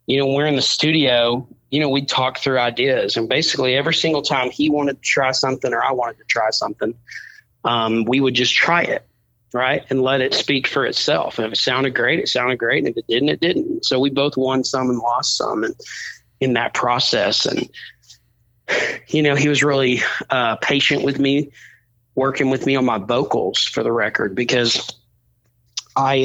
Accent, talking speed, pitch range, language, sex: American, 200 wpm, 120-135 Hz, English, male